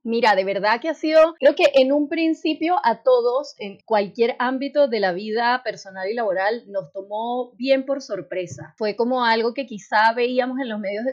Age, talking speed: 30-49, 200 wpm